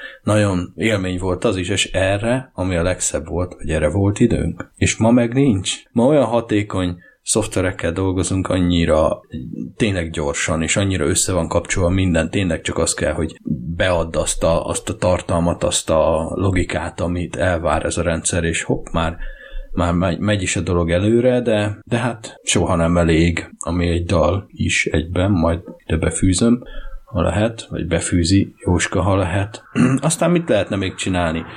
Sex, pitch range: male, 85-105 Hz